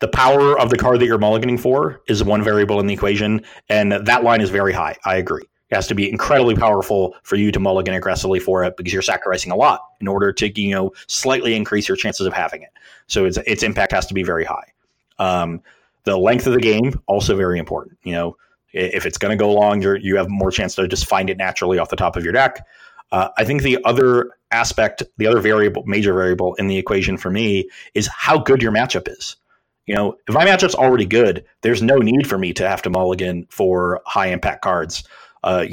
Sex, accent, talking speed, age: male, American, 230 wpm, 30-49